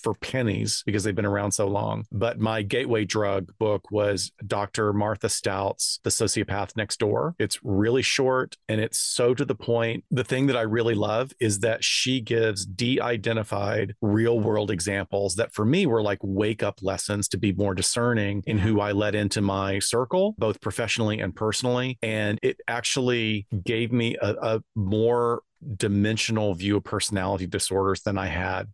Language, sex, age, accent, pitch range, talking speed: English, male, 40-59, American, 100-115 Hz, 175 wpm